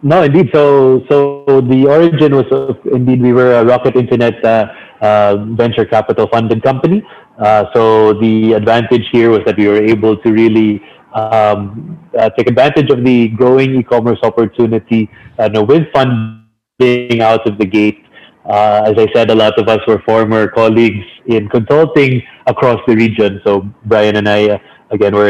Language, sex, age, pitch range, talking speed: English, male, 30-49, 110-125 Hz, 170 wpm